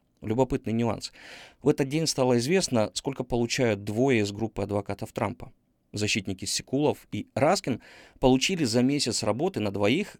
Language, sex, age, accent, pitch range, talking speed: Ukrainian, male, 30-49, native, 105-135 Hz, 140 wpm